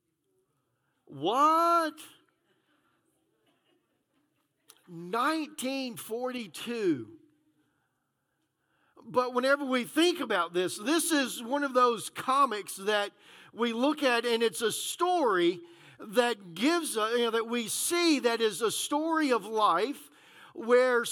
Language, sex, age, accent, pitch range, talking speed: English, male, 50-69, American, 180-290 Hz, 105 wpm